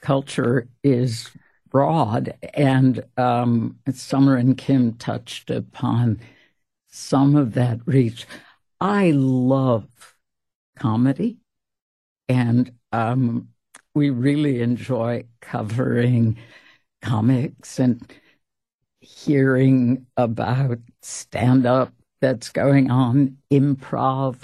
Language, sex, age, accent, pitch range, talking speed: English, female, 60-79, American, 125-145 Hz, 80 wpm